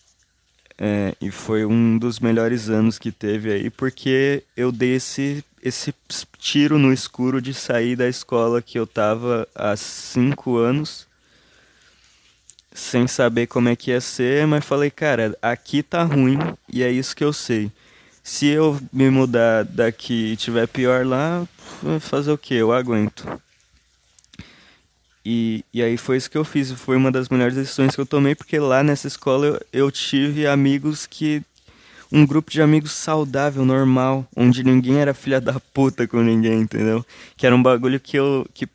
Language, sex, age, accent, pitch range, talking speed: Portuguese, male, 20-39, Brazilian, 115-140 Hz, 170 wpm